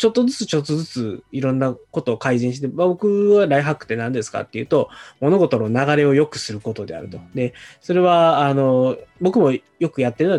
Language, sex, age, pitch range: Japanese, male, 20-39, 110-150 Hz